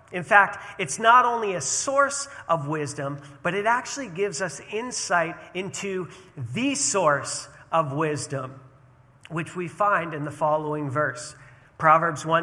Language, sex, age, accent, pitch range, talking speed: English, male, 40-59, American, 135-200 Hz, 135 wpm